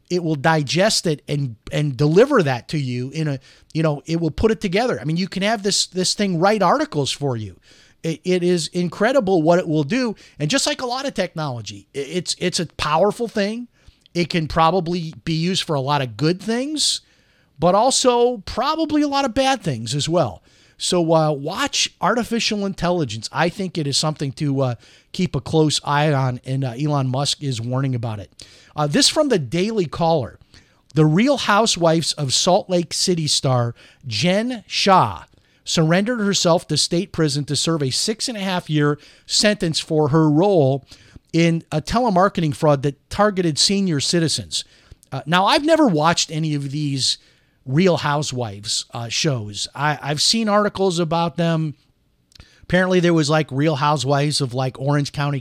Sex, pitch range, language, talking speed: male, 140-180 Hz, English, 180 wpm